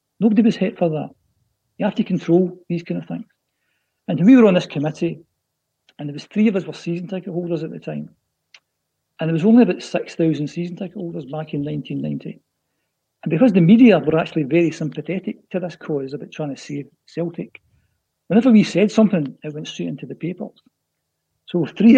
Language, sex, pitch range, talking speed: English, male, 150-195 Hz, 195 wpm